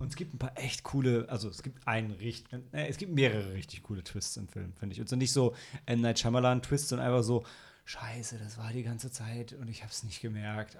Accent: German